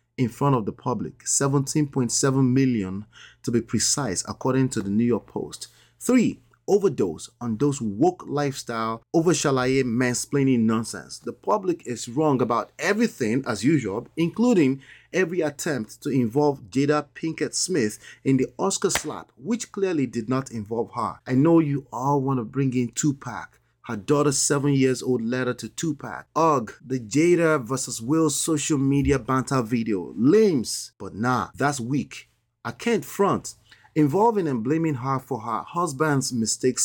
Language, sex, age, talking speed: English, male, 30-49, 150 wpm